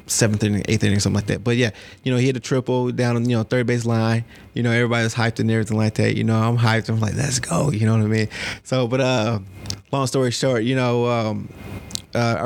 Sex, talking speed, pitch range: male, 265 wpm, 105-120 Hz